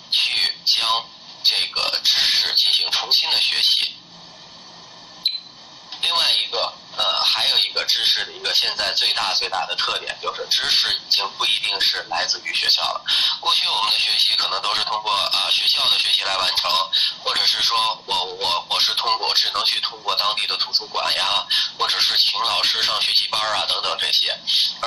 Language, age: Chinese, 20-39